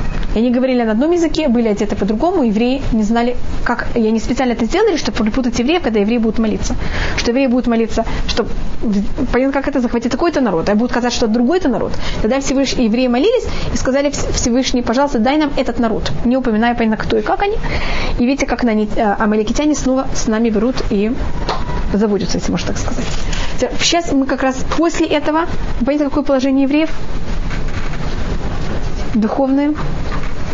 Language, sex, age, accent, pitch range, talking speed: Russian, female, 20-39, native, 230-290 Hz, 170 wpm